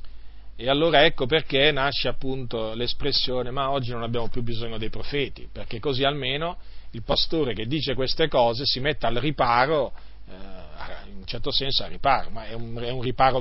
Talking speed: 170 wpm